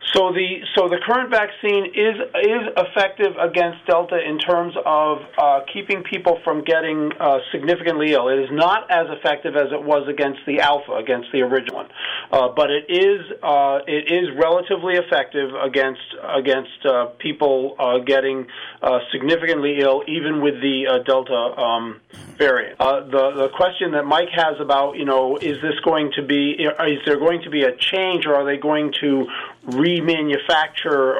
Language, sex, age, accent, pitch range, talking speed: English, male, 40-59, American, 135-165 Hz, 175 wpm